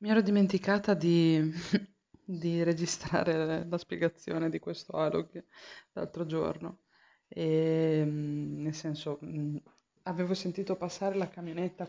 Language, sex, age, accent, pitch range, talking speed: Italian, female, 20-39, native, 150-175 Hz, 100 wpm